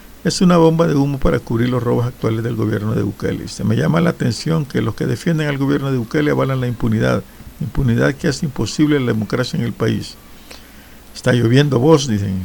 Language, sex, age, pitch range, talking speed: Spanish, male, 60-79, 115-150 Hz, 205 wpm